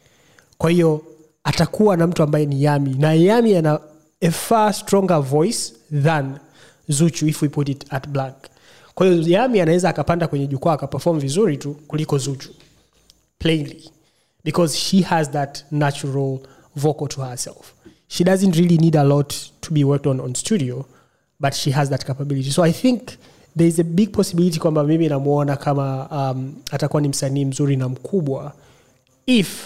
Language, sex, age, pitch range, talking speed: Swahili, male, 30-49, 140-160 Hz, 165 wpm